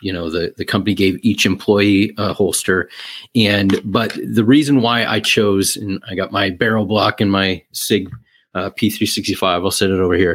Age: 40-59